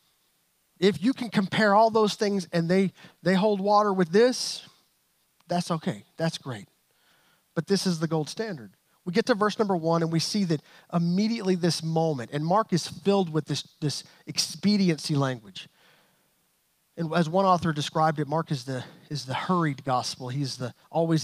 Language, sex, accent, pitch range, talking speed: English, male, American, 155-195 Hz, 175 wpm